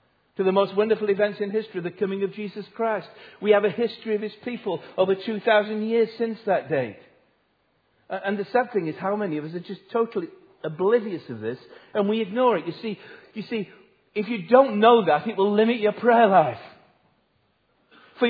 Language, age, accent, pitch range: English, 50-69, British, 160-220 Hz